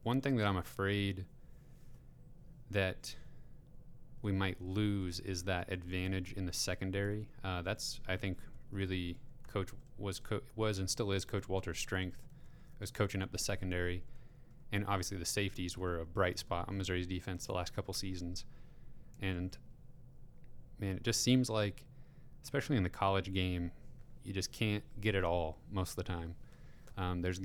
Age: 30-49